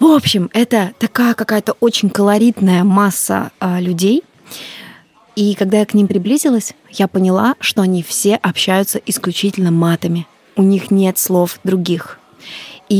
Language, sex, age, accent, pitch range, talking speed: Russian, female, 20-39, native, 180-220 Hz, 135 wpm